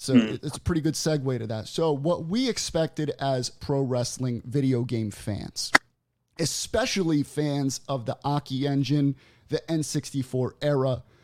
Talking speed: 145 wpm